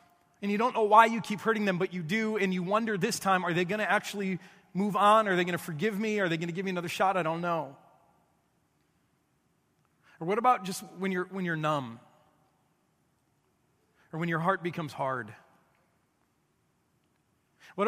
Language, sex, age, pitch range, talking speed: English, male, 30-49, 170-210 Hz, 190 wpm